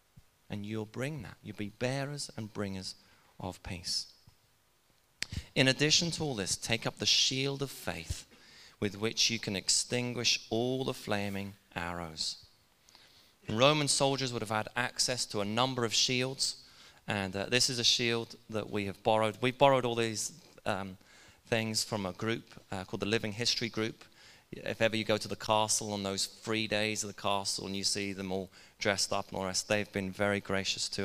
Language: English